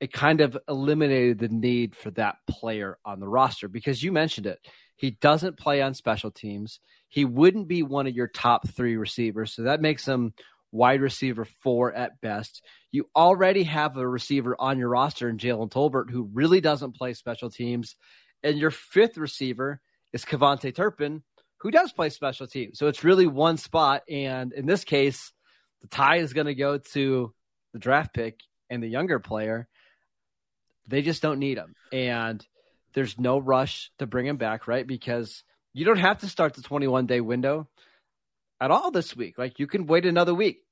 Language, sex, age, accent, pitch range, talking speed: English, male, 30-49, American, 120-145 Hz, 185 wpm